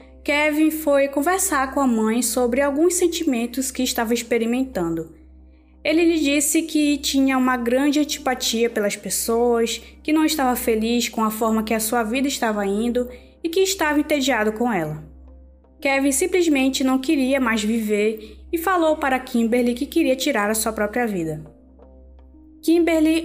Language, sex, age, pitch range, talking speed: Portuguese, female, 20-39, 220-290 Hz, 150 wpm